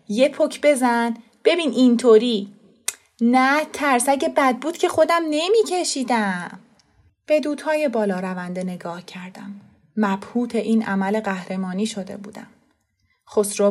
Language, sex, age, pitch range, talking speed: Persian, female, 30-49, 195-240 Hz, 115 wpm